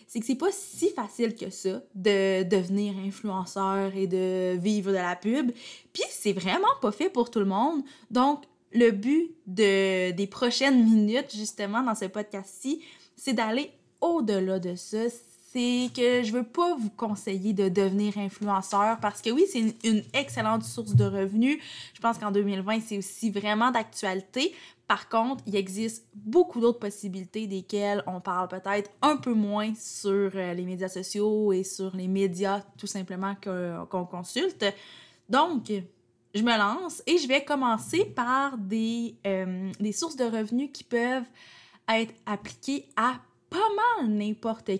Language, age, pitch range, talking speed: French, 20-39, 195-245 Hz, 160 wpm